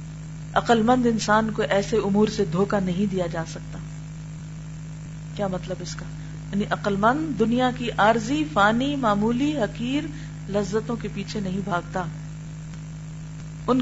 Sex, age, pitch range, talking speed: female, 40-59, 155-215 Hz, 130 wpm